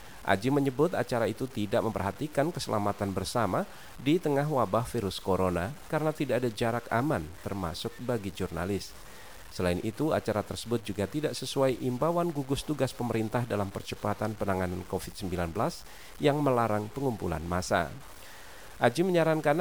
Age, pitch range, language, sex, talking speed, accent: 40-59, 100-135 Hz, Indonesian, male, 130 wpm, native